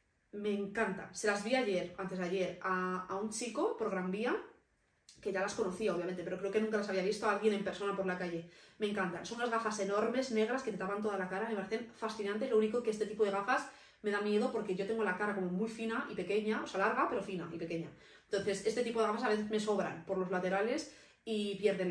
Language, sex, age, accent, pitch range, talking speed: Spanish, female, 20-39, Spanish, 190-225 Hz, 250 wpm